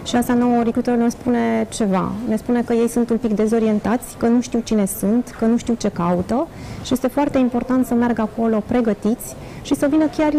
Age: 30-49